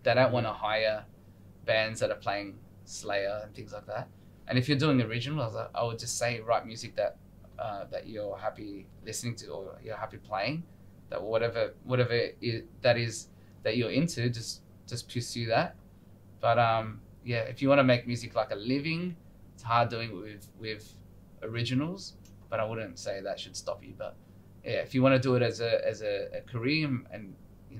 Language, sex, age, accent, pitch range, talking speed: English, male, 20-39, Australian, 105-125 Hz, 200 wpm